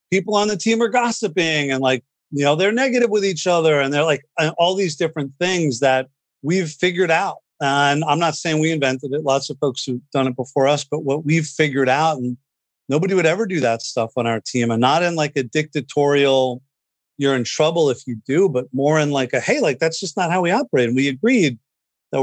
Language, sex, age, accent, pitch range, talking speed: English, male, 40-59, American, 130-155 Hz, 230 wpm